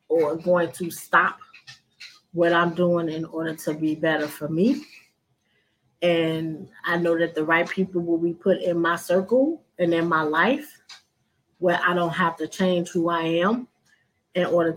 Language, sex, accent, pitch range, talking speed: English, female, American, 170-225 Hz, 170 wpm